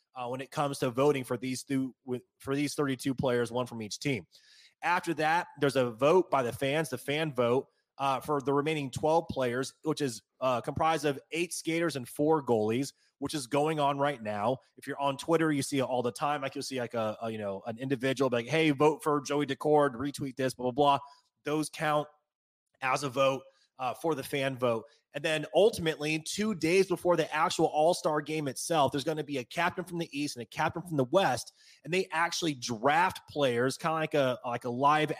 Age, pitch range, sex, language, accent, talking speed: 30-49, 130-160 Hz, male, English, American, 225 wpm